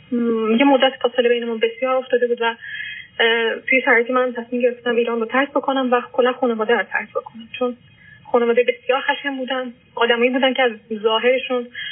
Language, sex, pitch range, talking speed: Persian, female, 230-270 Hz, 170 wpm